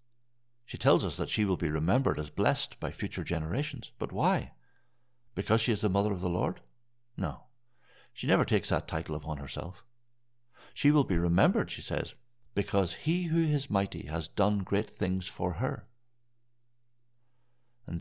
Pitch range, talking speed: 85-120 Hz, 165 wpm